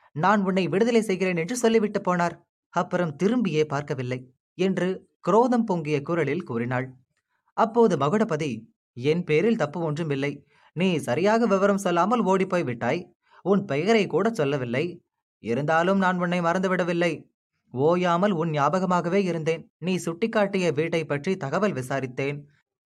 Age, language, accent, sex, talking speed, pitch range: 20-39, Tamil, native, male, 120 wpm, 150-195 Hz